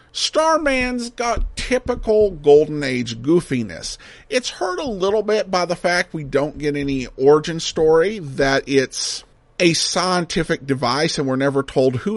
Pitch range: 125-210 Hz